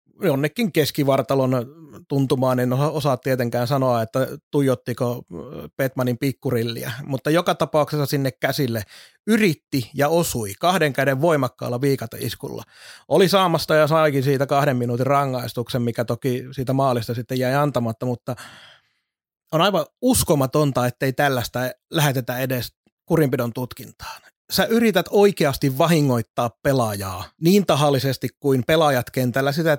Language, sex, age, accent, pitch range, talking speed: Finnish, male, 30-49, native, 125-150 Hz, 125 wpm